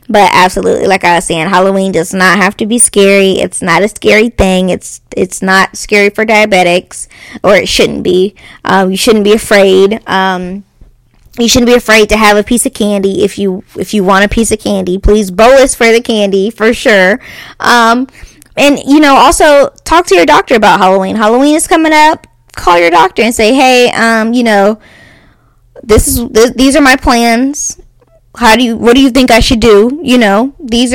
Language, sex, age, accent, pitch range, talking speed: English, female, 20-39, American, 195-240 Hz, 205 wpm